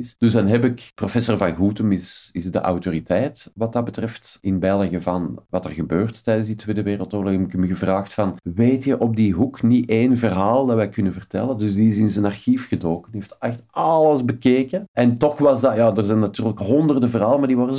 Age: 50-69